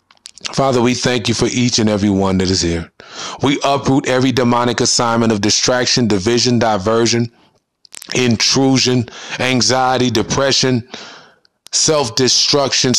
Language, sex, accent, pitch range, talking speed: English, male, American, 130-185 Hz, 115 wpm